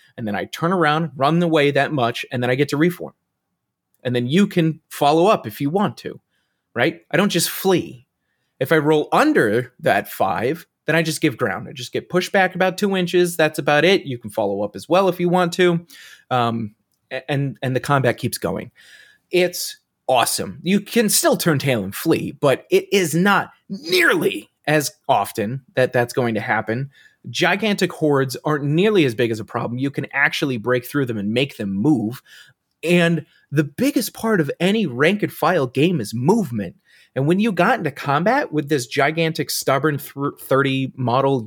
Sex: male